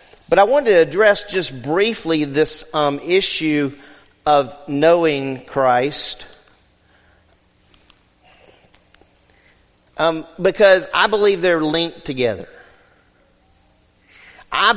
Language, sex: English, male